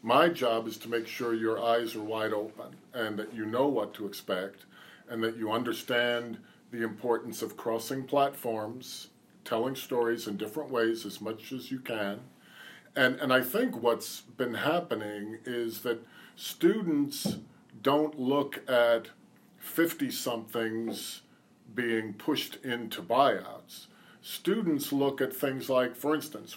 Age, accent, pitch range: 50-69, American, 115-145 Hz